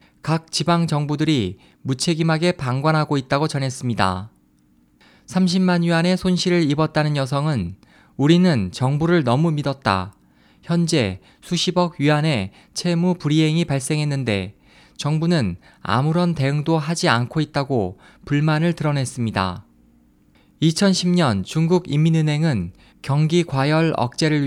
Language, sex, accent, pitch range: Korean, male, native, 125-170 Hz